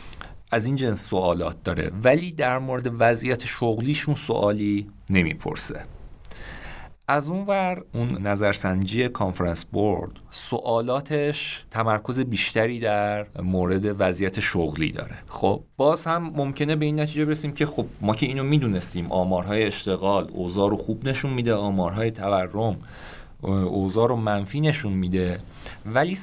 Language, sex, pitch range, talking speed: Persian, male, 95-135 Hz, 125 wpm